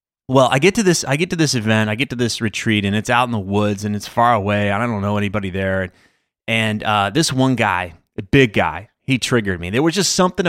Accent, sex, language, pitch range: American, male, English, 105-135 Hz